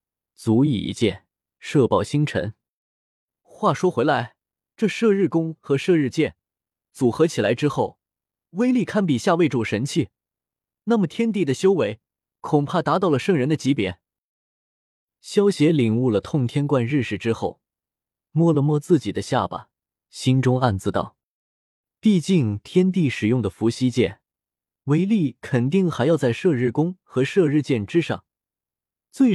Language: Chinese